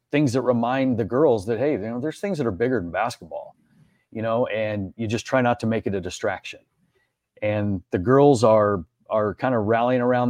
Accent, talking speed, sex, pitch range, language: American, 215 wpm, male, 110-135 Hz, English